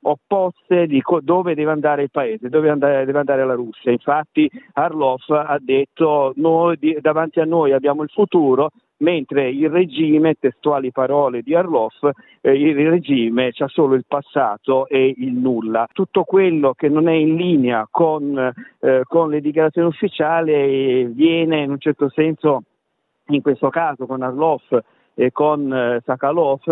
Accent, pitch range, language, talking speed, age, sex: native, 130-155 Hz, Italian, 150 wpm, 50-69, male